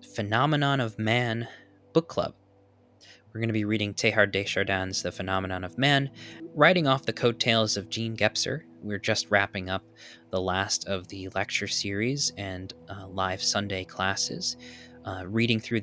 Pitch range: 95-115 Hz